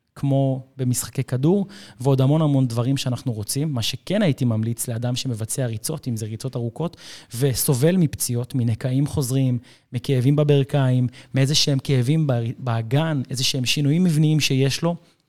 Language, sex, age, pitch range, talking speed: Hebrew, male, 30-49, 125-150 Hz, 140 wpm